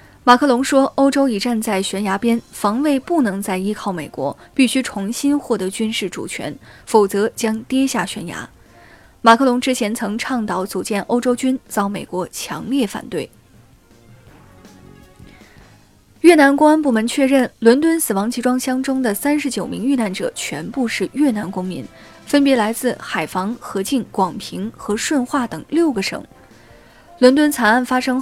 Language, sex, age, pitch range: Chinese, female, 20-39, 205-265 Hz